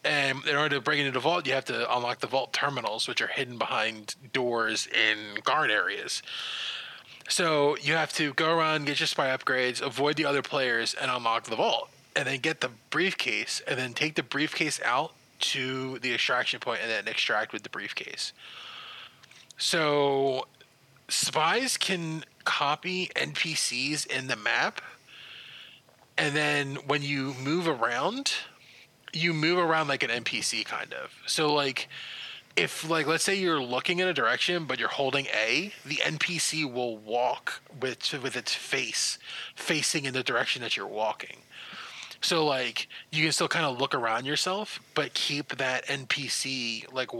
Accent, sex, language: American, male, English